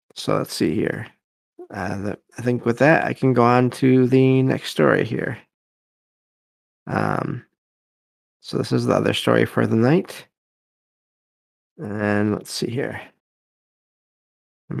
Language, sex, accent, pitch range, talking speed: English, male, American, 110-140 Hz, 135 wpm